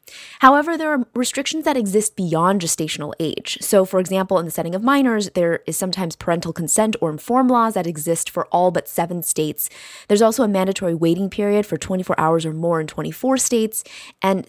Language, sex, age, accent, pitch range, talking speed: English, female, 20-39, American, 165-210 Hz, 195 wpm